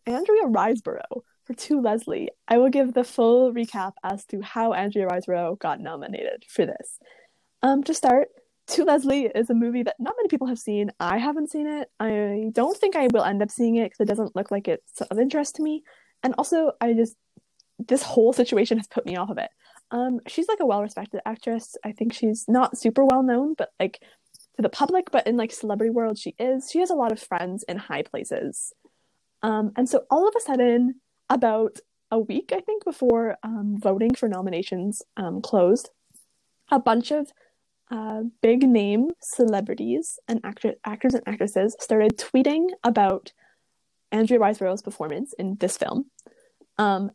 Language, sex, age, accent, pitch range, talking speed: English, female, 10-29, American, 215-270 Hz, 185 wpm